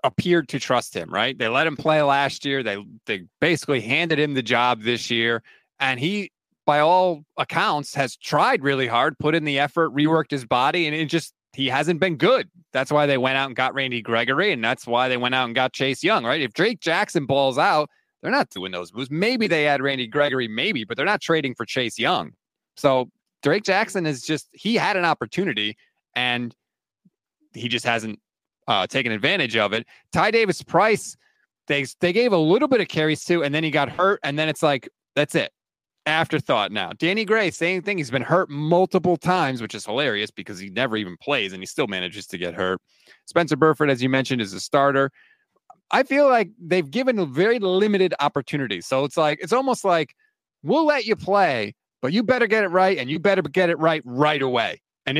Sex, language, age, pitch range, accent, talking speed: male, English, 20-39, 130-180 Hz, American, 210 wpm